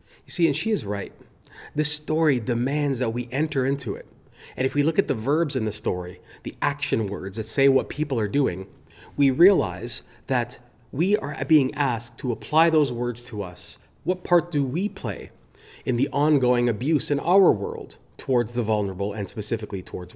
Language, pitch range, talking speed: English, 105-145 Hz, 190 wpm